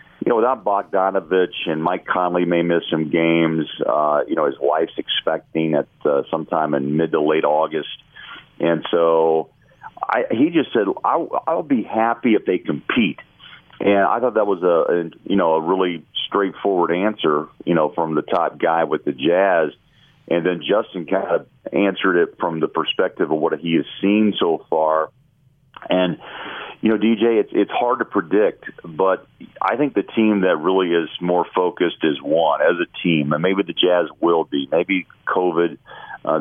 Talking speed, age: 180 wpm, 40-59